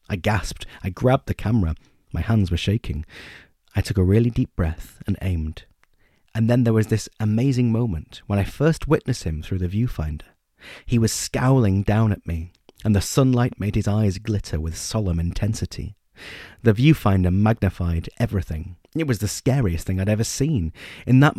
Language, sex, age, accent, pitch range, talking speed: English, male, 30-49, British, 90-115 Hz, 175 wpm